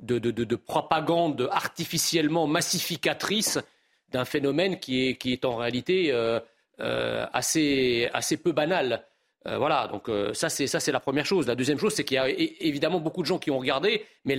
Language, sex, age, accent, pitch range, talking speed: French, male, 40-59, French, 150-210 Hz, 200 wpm